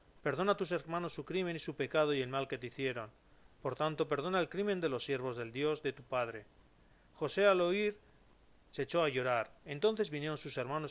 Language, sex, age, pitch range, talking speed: Spanish, male, 40-59, 125-165 Hz, 215 wpm